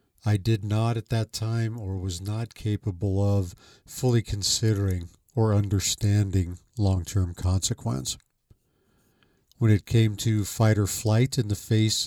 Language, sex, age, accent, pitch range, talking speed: English, male, 50-69, American, 100-120 Hz, 135 wpm